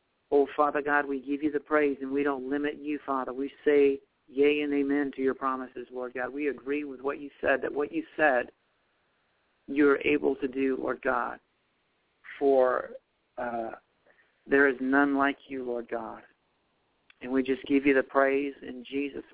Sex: male